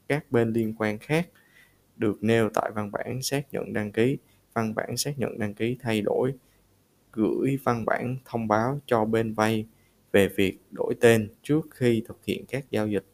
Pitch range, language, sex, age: 105-125 Hz, Vietnamese, male, 20-39